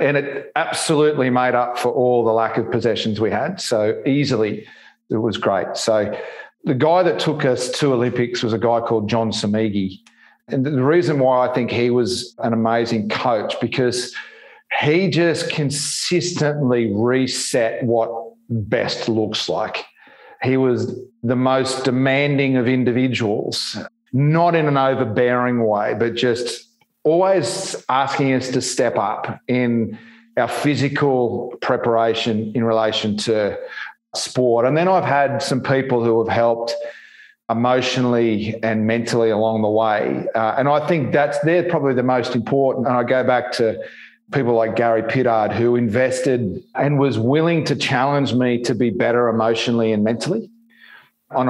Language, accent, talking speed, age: English, Australian, 150 wpm, 40-59